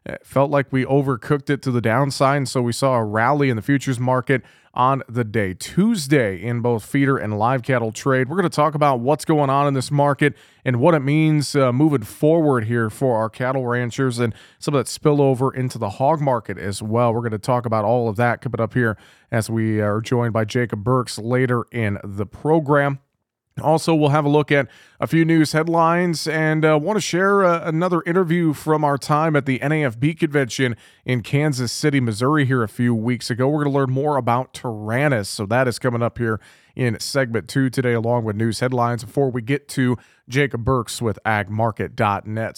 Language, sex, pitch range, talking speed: English, male, 120-150 Hz, 205 wpm